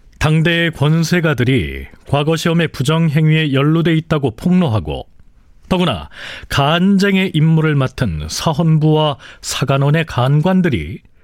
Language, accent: Korean, native